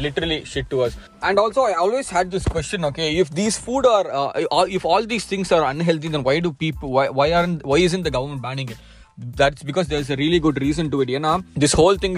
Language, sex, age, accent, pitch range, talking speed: Tamil, male, 20-39, native, 135-180 Hz, 245 wpm